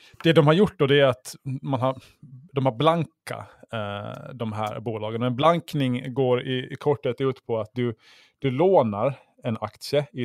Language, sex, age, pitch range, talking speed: Swedish, male, 20-39, 110-135 Hz, 185 wpm